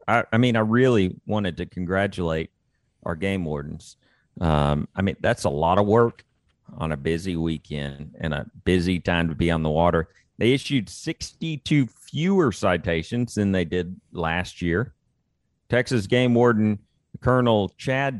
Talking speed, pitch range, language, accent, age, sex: 155 wpm, 90-130 Hz, English, American, 40-59, male